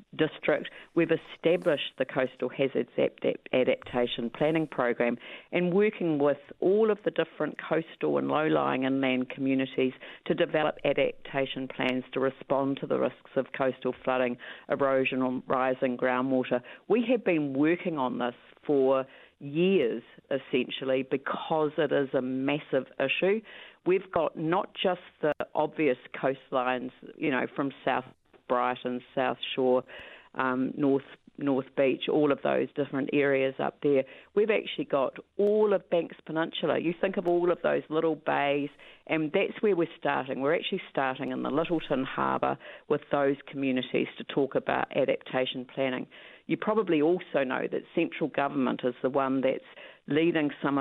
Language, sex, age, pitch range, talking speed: English, female, 50-69, 130-165 Hz, 150 wpm